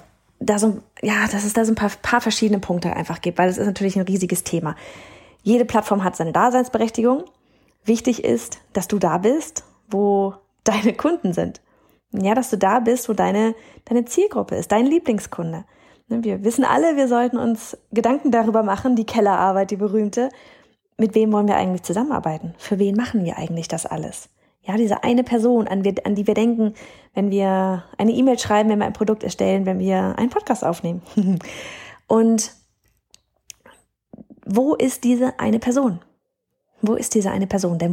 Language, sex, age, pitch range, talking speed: German, female, 20-39, 180-230 Hz, 175 wpm